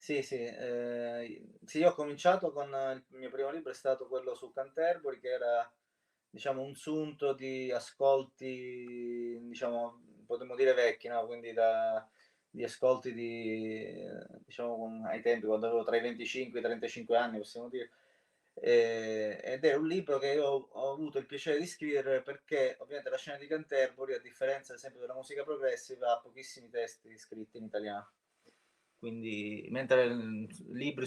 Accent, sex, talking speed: native, male, 160 wpm